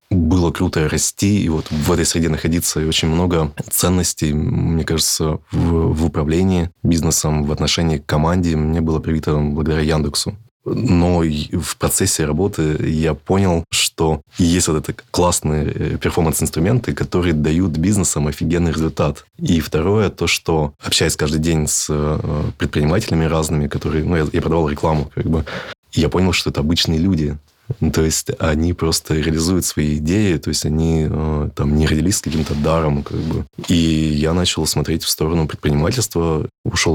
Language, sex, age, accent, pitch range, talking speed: Russian, male, 20-39, native, 75-90 Hz, 155 wpm